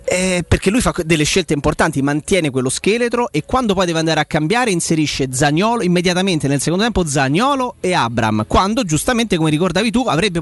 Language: Italian